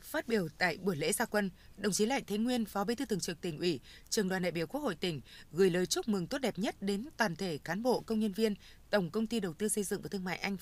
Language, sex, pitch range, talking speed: Vietnamese, female, 185-230 Hz, 295 wpm